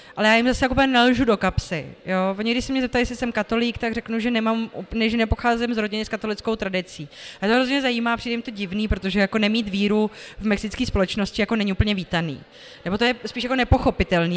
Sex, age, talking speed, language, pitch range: female, 20-39, 210 wpm, Czech, 205-240 Hz